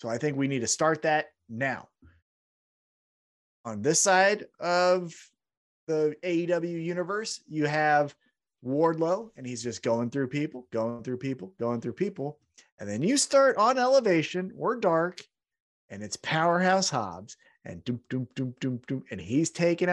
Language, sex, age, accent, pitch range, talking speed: English, male, 30-49, American, 130-185 Hz, 155 wpm